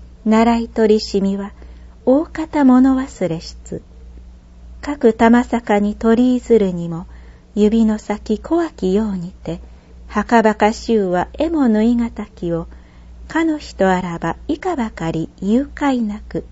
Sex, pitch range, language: female, 155-235 Hz, Japanese